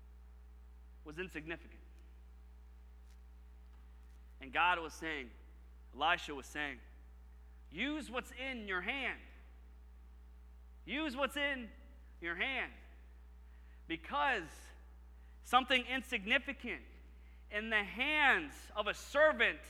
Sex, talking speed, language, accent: male, 85 wpm, English, American